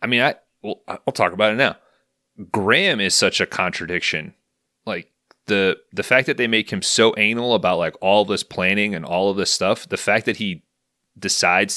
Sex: male